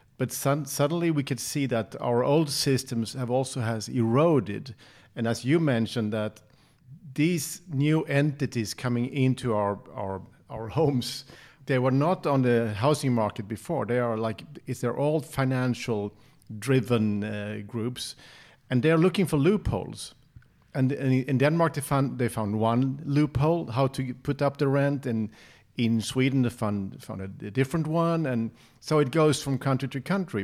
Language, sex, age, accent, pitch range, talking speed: English, male, 50-69, Norwegian, 115-140 Hz, 170 wpm